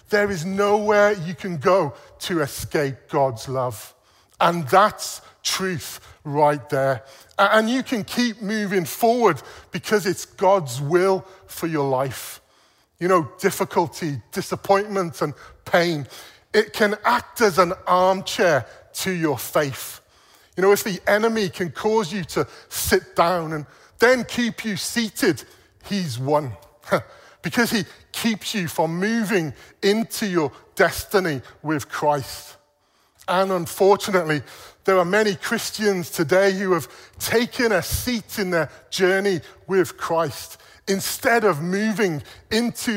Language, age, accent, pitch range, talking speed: English, 40-59, British, 150-205 Hz, 130 wpm